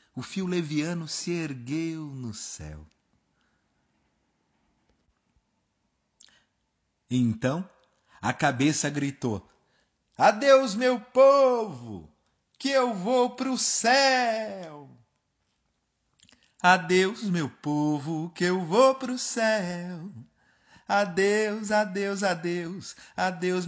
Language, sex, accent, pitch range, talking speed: Portuguese, male, Brazilian, 135-210 Hz, 85 wpm